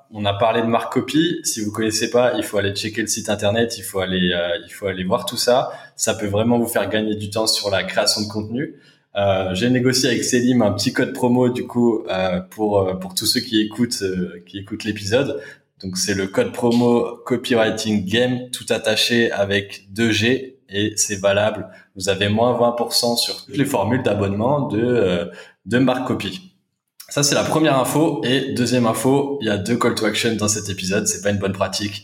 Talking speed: 210 wpm